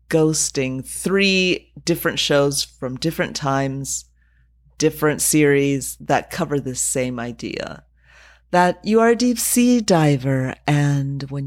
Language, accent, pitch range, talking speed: English, American, 135-170 Hz, 120 wpm